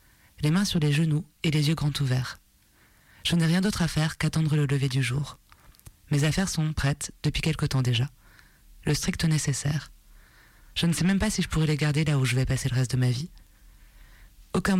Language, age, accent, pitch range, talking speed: French, 20-39, French, 130-160 Hz, 215 wpm